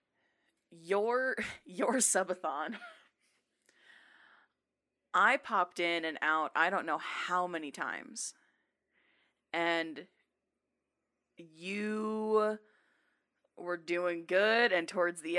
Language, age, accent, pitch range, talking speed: English, 20-39, American, 170-210 Hz, 85 wpm